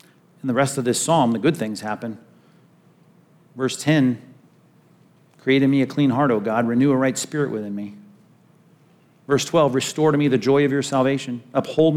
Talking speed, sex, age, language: 185 wpm, male, 50-69, English